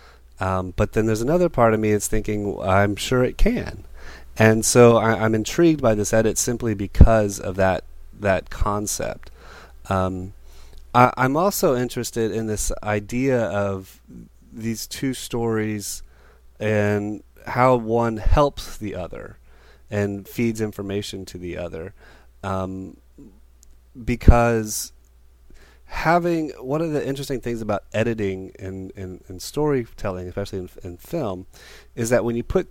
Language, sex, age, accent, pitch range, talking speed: English, male, 30-49, American, 90-115 Hz, 140 wpm